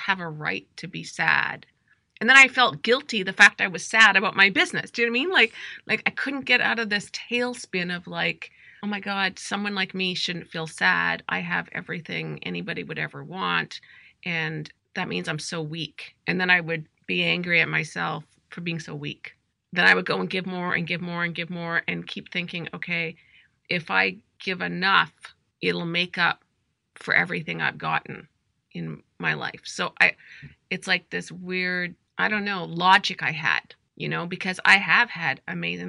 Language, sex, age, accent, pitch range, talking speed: English, female, 30-49, American, 155-185 Hz, 200 wpm